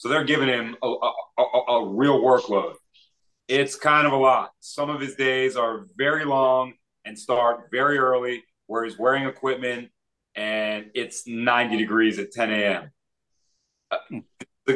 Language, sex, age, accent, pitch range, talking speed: English, male, 30-49, American, 125-150 Hz, 150 wpm